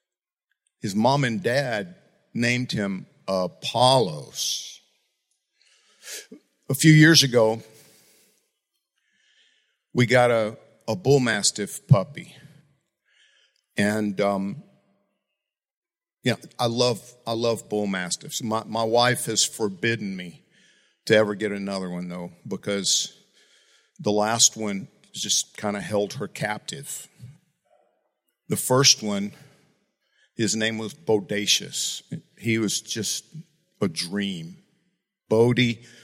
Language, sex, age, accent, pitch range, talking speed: English, male, 50-69, American, 100-140 Hz, 105 wpm